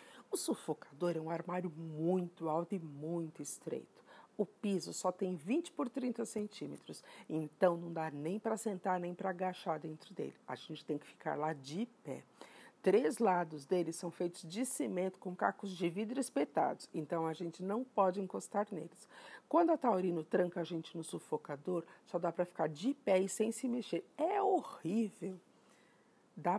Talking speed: 175 wpm